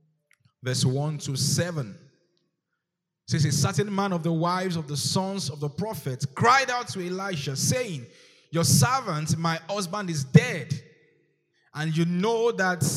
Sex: male